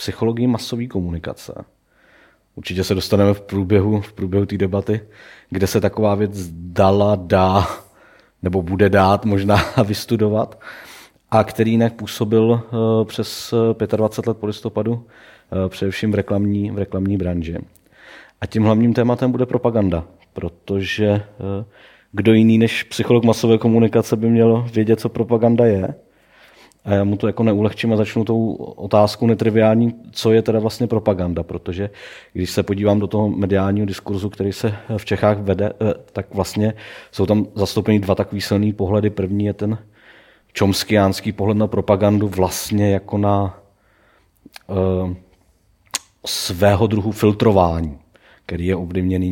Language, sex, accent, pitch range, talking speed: Czech, male, native, 95-110 Hz, 135 wpm